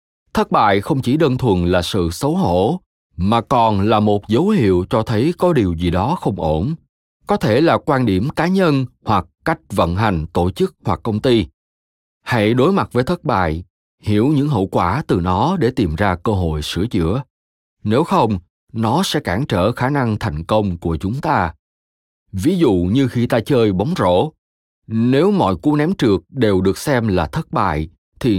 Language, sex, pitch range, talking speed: Vietnamese, male, 85-140 Hz, 195 wpm